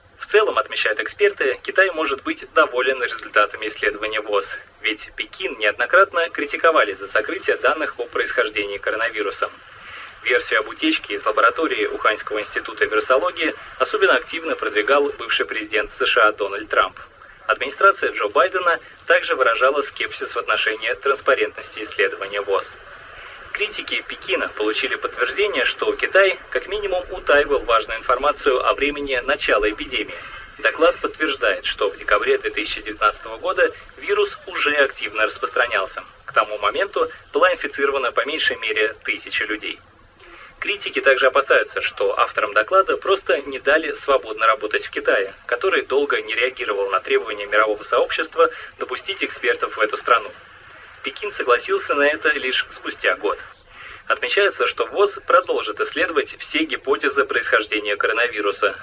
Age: 20-39